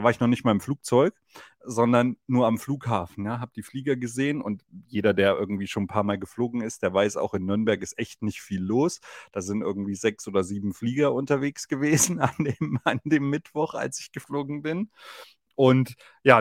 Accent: German